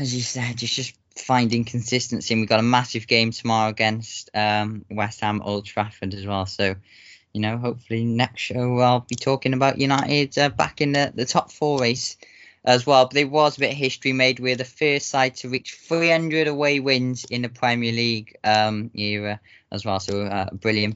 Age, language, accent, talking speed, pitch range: 10-29, English, British, 205 wpm, 120-160 Hz